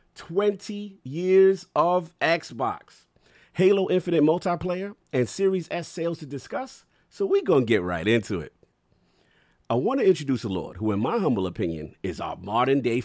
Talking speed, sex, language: 165 wpm, male, English